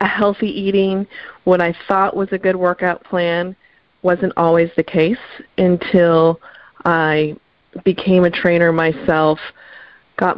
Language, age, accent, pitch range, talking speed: English, 30-49, American, 160-195 Hz, 125 wpm